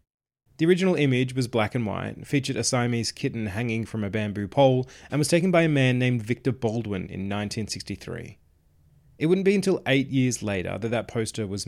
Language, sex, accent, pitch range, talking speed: English, male, Australian, 100-130 Hz, 195 wpm